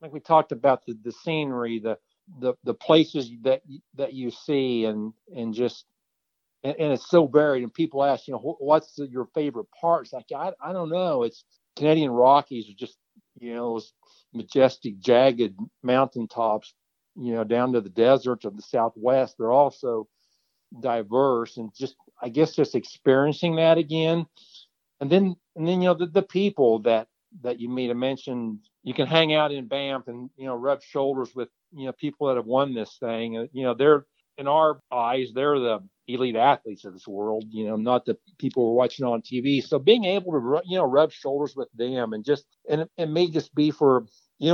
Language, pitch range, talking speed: English, 120-155 Hz, 195 wpm